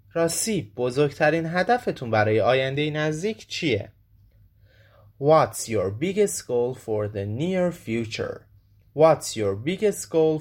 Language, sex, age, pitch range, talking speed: Persian, male, 30-49, 105-155 Hz, 115 wpm